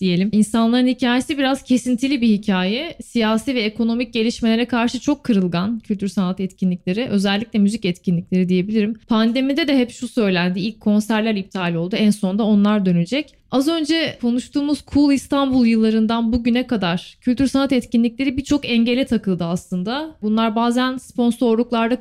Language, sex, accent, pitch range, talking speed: Turkish, female, native, 210-270 Hz, 135 wpm